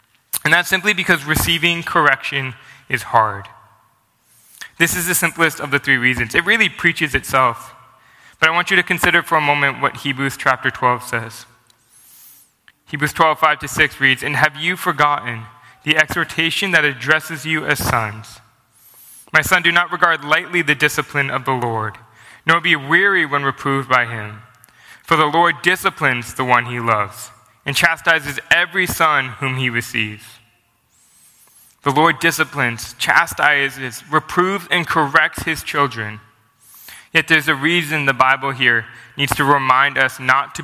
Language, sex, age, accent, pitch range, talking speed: English, male, 20-39, American, 120-160 Hz, 155 wpm